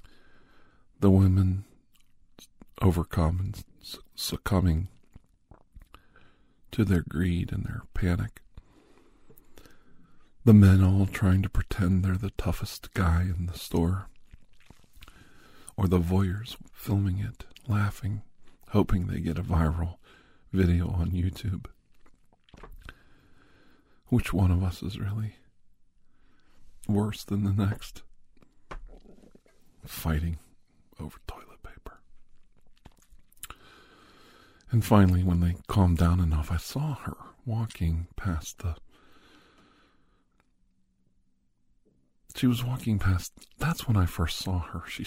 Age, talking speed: 50-69, 105 wpm